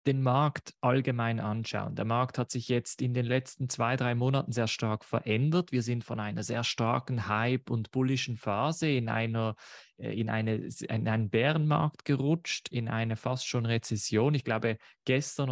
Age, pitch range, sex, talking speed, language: 20-39, 110-140 Hz, male, 160 wpm, German